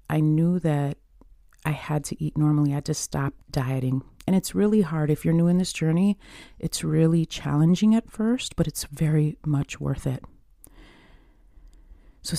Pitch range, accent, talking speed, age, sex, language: 140-165 Hz, American, 170 wpm, 30-49, female, English